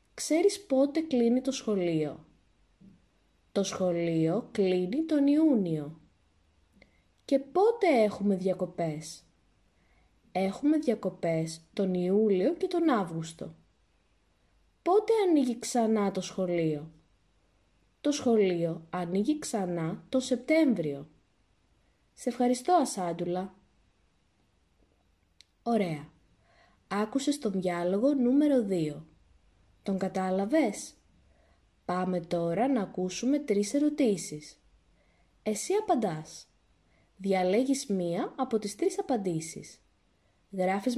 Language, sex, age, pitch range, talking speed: English, female, 20-39, 165-265 Hz, 85 wpm